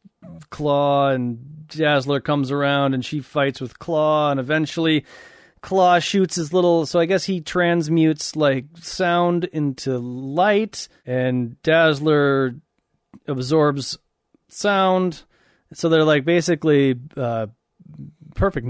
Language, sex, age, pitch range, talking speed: English, male, 30-49, 125-170 Hz, 110 wpm